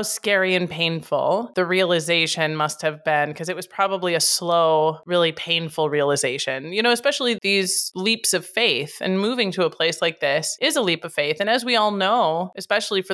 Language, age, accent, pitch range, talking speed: English, 30-49, American, 170-235 Hz, 195 wpm